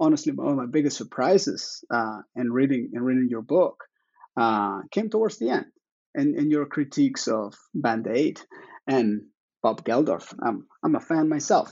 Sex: male